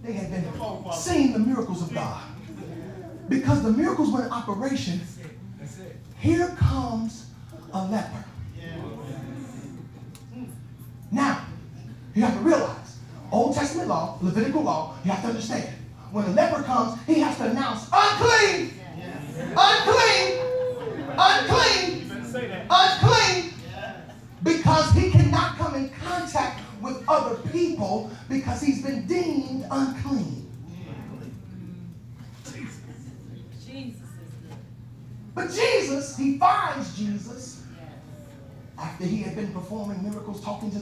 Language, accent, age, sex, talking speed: English, American, 30-49, male, 105 wpm